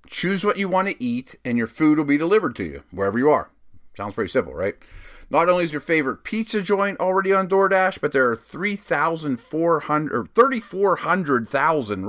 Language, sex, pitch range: English, male, 135-185 Hz